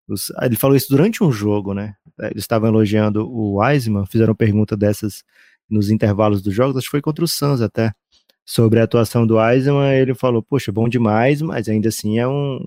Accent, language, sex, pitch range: Brazilian, Portuguese, male, 105-140 Hz